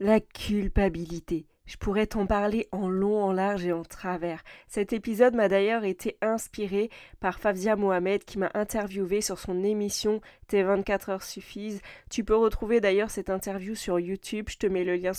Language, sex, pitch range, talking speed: French, female, 195-225 Hz, 180 wpm